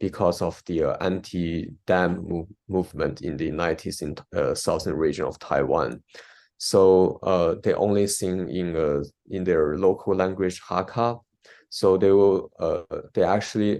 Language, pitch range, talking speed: English, 90-105 Hz, 150 wpm